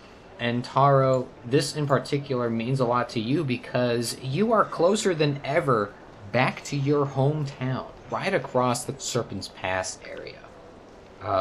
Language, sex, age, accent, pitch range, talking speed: English, male, 20-39, American, 115-140 Hz, 140 wpm